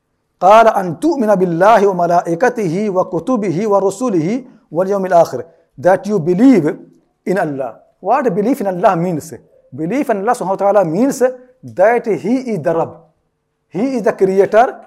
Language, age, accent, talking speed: English, 60-79, Indian, 95 wpm